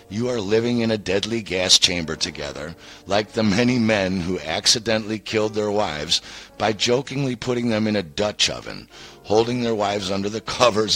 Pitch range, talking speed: 95-120 Hz, 175 wpm